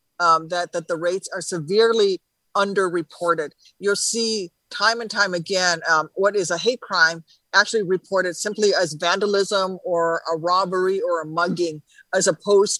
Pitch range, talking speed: 170-205 Hz, 155 wpm